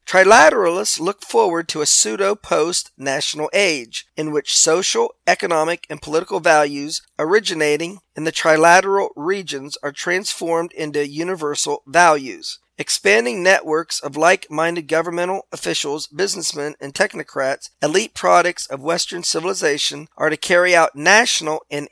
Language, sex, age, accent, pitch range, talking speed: English, male, 40-59, American, 150-190 Hz, 120 wpm